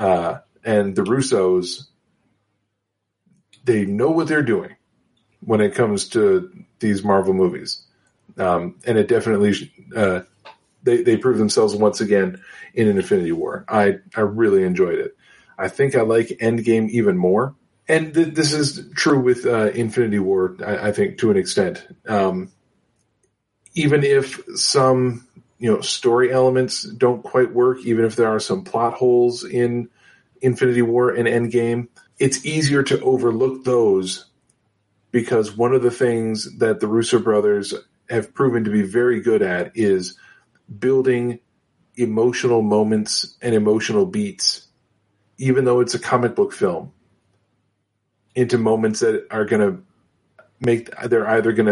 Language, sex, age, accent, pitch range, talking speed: English, male, 40-59, American, 105-130 Hz, 145 wpm